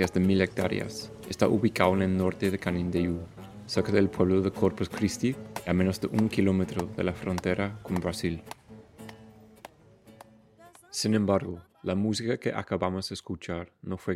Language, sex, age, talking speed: English, male, 30-49, 155 wpm